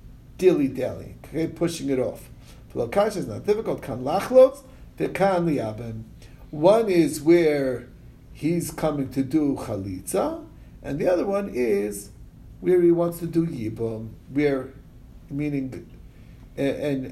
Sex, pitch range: male, 140-185 Hz